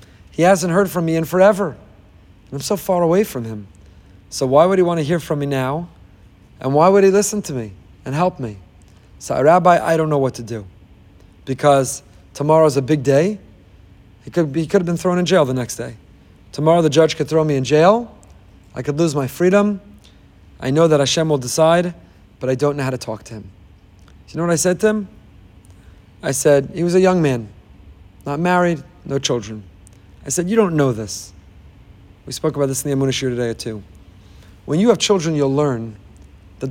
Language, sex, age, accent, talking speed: English, male, 40-59, American, 205 wpm